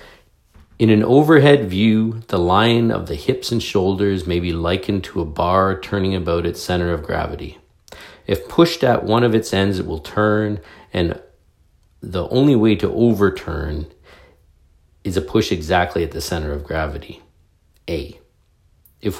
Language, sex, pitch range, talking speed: English, male, 85-110 Hz, 155 wpm